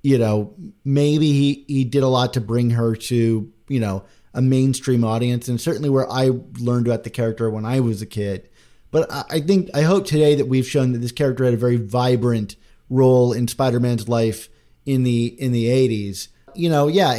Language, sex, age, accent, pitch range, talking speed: English, male, 30-49, American, 120-140 Hz, 205 wpm